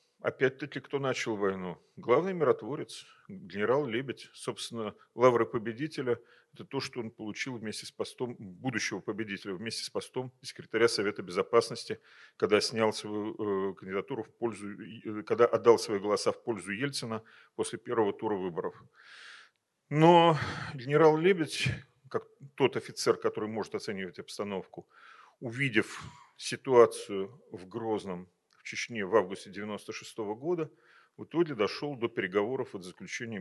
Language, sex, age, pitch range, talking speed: Russian, male, 40-59, 105-140 Hz, 130 wpm